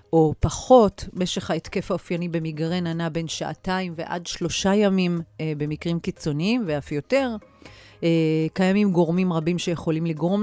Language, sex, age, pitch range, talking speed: Hebrew, female, 30-49, 155-185 Hz, 130 wpm